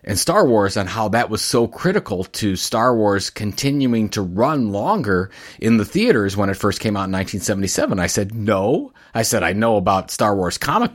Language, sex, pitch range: English, male, 95-115 Hz